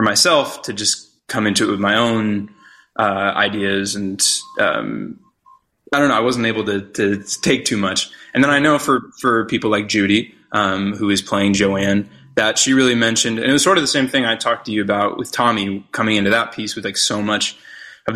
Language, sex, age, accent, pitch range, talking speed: English, male, 20-39, American, 100-130 Hz, 220 wpm